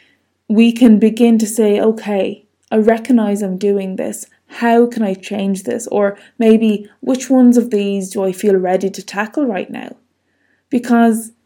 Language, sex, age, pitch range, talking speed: English, female, 20-39, 205-255 Hz, 160 wpm